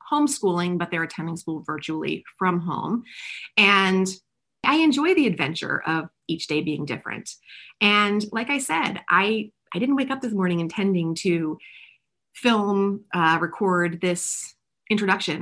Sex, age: female, 30-49